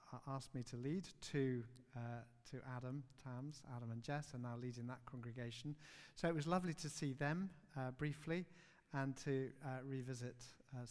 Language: English